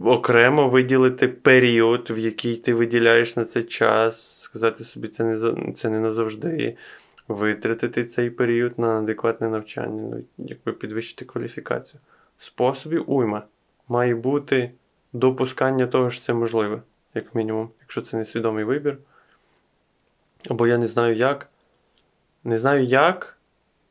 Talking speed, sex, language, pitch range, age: 125 wpm, male, Ukrainian, 115-130 Hz, 20-39